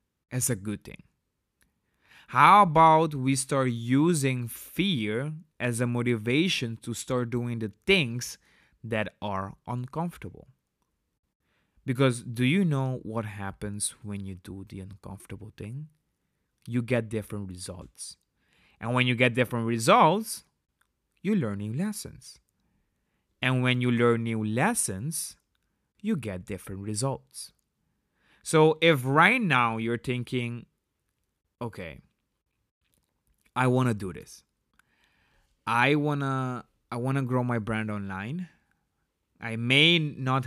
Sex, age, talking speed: male, 30-49, 115 wpm